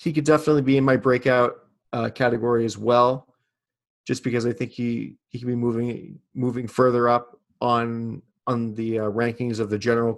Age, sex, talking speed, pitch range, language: 30-49, male, 185 wpm, 115-135 Hz, English